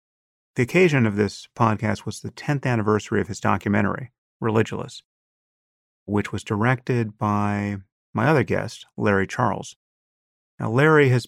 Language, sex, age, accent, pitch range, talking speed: English, male, 30-49, American, 100-120 Hz, 135 wpm